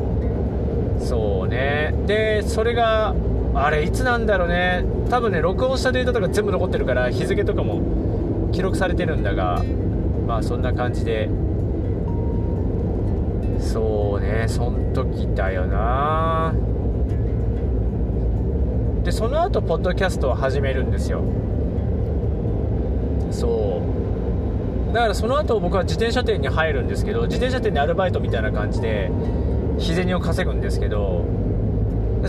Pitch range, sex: 90-110 Hz, male